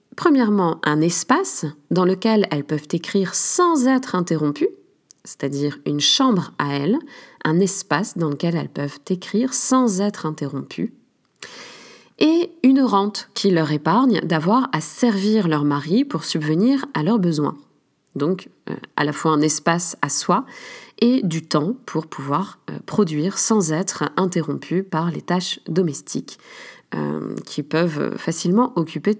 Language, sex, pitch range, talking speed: French, female, 160-250 Hz, 140 wpm